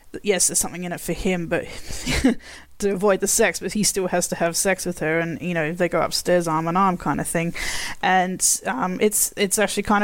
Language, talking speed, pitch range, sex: English, 235 wpm, 170-205 Hz, female